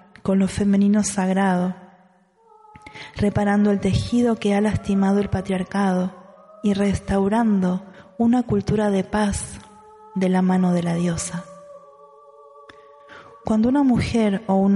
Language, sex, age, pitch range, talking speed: Spanish, female, 20-39, 185-220 Hz, 120 wpm